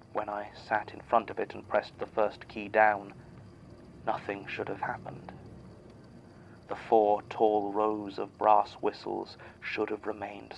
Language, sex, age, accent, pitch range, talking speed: English, male, 30-49, British, 100-110 Hz, 155 wpm